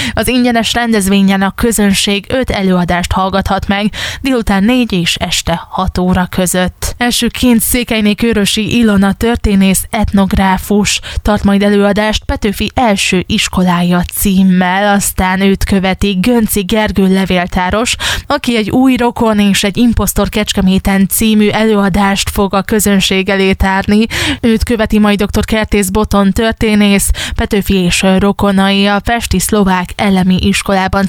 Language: Hungarian